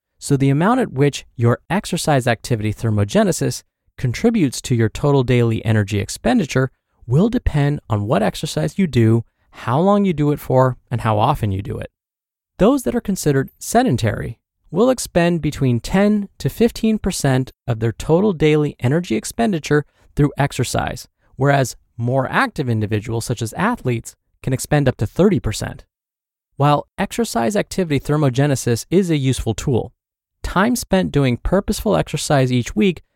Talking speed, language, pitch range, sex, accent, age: 145 wpm, English, 115-170 Hz, male, American, 20-39